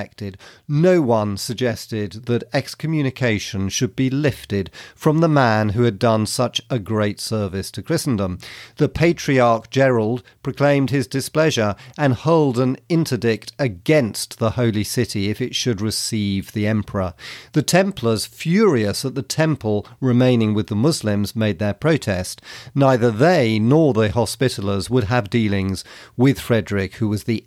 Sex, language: male, English